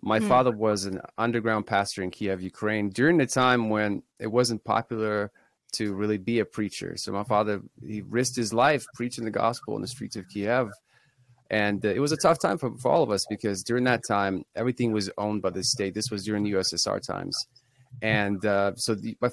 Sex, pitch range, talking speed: male, 100-120 Hz, 210 wpm